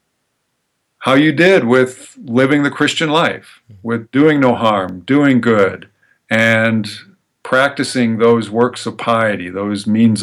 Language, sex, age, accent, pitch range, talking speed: English, male, 50-69, American, 115-135 Hz, 130 wpm